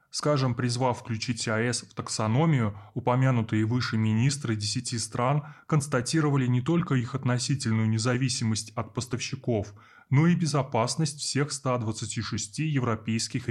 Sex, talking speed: male, 110 wpm